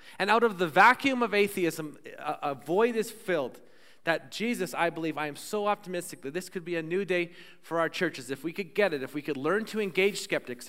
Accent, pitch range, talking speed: American, 160-195 Hz, 230 wpm